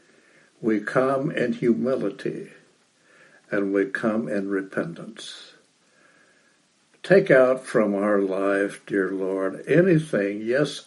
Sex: male